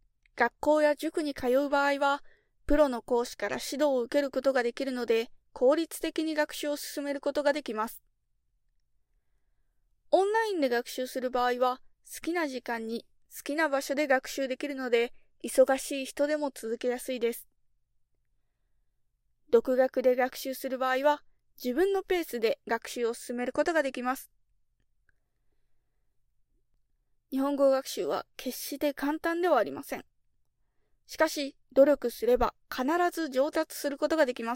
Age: 20-39